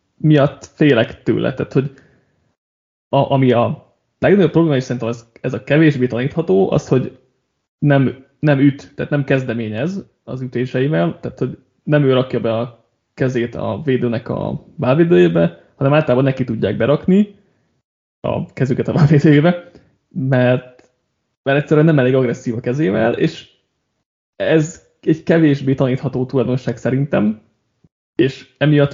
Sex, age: male, 20-39